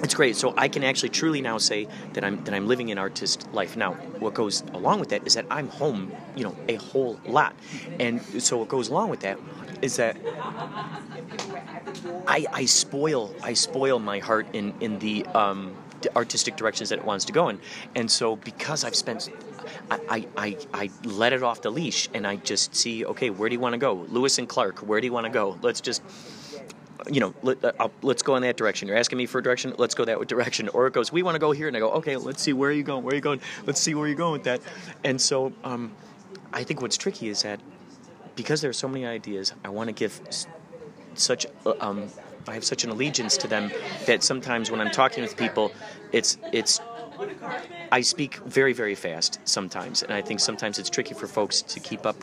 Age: 30-49